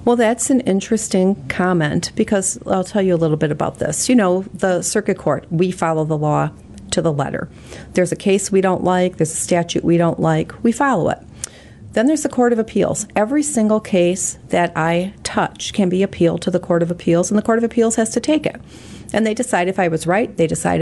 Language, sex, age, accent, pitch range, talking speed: English, female, 40-59, American, 170-215 Hz, 230 wpm